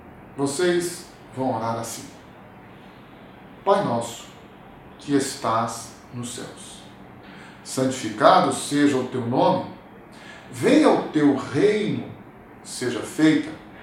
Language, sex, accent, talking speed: Portuguese, male, Brazilian, 90 wpm